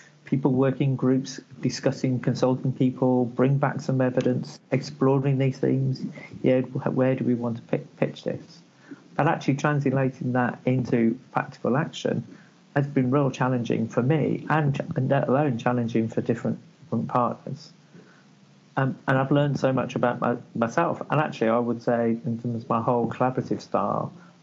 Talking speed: 155 wpm